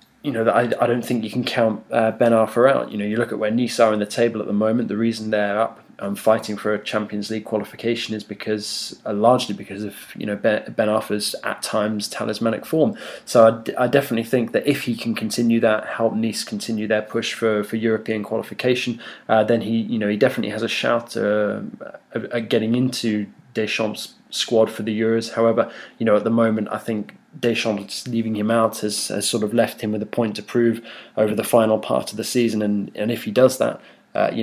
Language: English